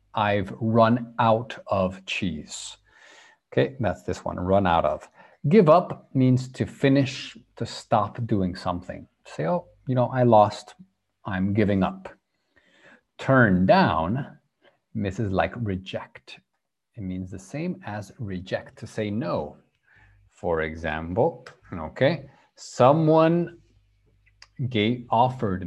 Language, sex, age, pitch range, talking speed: English, male, 50-69, 95-130 Hz, 120 wpm